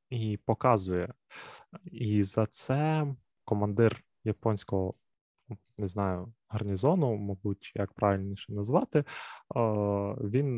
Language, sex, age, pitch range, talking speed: Ukrainian, male, 20-39, 105-135 Hz, 85 wpm